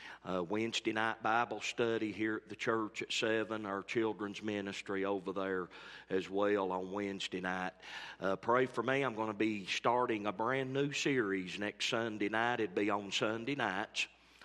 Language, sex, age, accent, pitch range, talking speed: English, male, 40-59, American, 105-130 Hz, 180 wpm